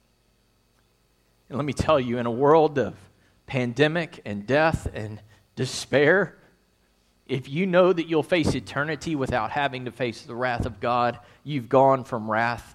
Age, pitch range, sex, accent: 40-59, 115-180 Hz, male, American